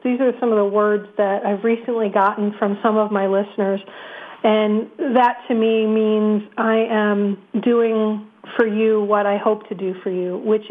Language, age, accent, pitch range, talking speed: English, 40-59, American, 205-235 Hz, 185 wpm